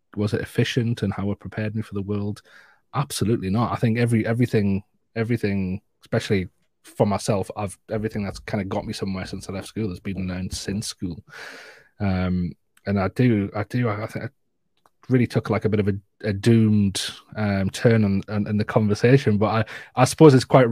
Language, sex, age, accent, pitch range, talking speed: English, male, 20-39, British, 100-120 Hz, 195 wpm